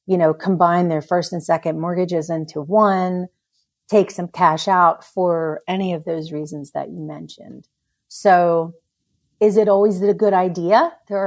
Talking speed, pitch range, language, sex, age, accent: 160 wpm, 165-195 Hz, English, female, 40-59, American